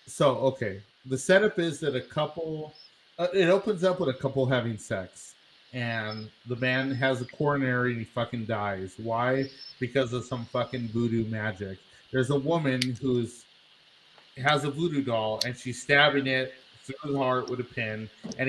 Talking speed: 170 wpm